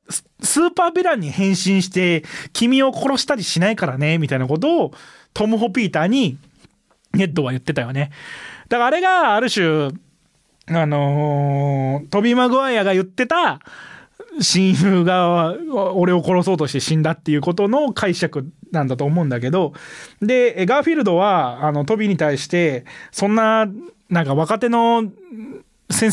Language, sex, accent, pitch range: Japanese, male, native, 150-220 Hz